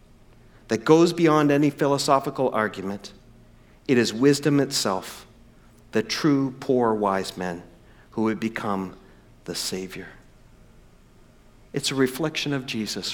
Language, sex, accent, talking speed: English, male, American, 115 wpm